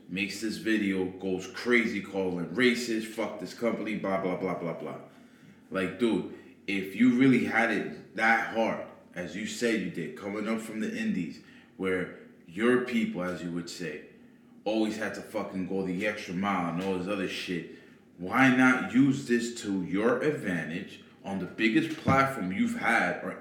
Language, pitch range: English, 100-135 Hz